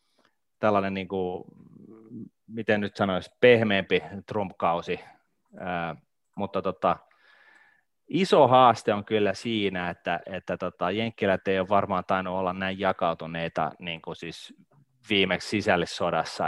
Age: 30-49